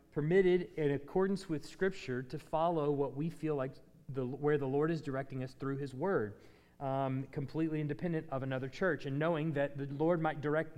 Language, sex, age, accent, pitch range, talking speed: English, male, 40-59, American, 135-170 Hz, 185 wpm